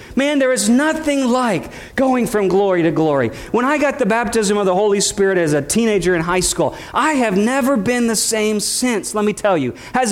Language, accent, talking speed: English, American, 220 wpm